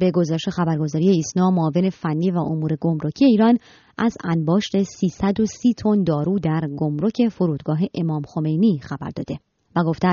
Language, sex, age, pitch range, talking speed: Persian, male, 30-49, 155-195 Hz, 140 wpm